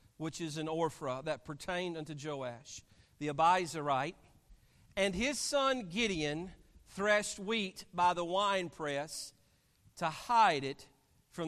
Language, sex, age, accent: English, male, 50-69, American